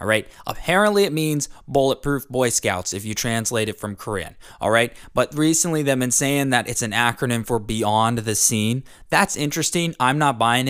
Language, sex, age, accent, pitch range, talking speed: English, male, 20-39, American, 115-175 Hz, 190 wpm